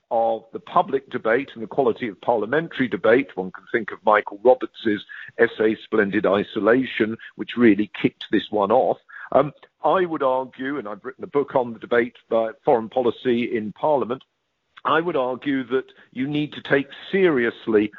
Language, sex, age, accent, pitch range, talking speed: English, male, 50-69, British, 115-150 Hz, 170 wpm